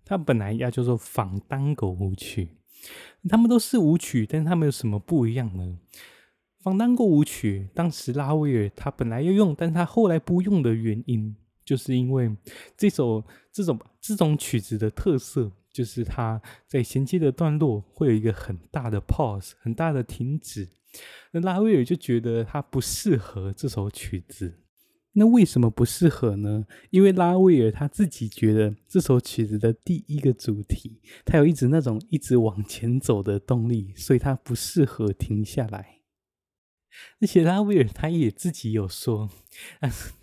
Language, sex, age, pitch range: Chinese, male, 20-39, 105-150 Hz